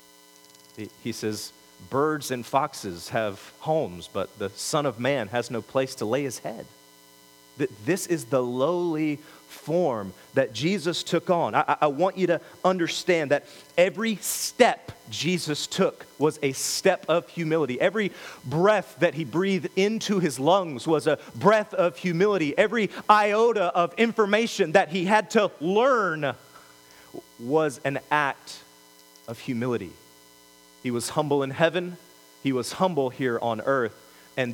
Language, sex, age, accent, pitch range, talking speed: English, male, 40-59, American, 100-165 Hz, 145 wpm